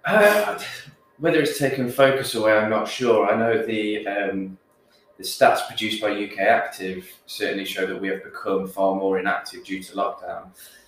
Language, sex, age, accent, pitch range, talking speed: English, male, 20-39, British, 95-120 Hz, 170 wpm